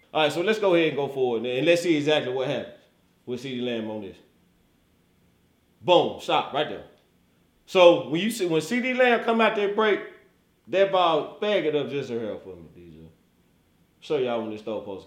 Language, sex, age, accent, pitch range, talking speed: English, male, 30-49, American, 120-190 Hz, 215 wpm